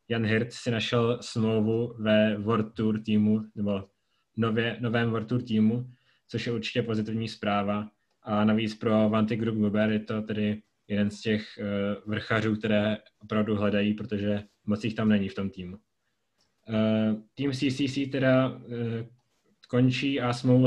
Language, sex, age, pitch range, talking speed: Czech, male, 20-39, 110-120 Hz, 145 wpm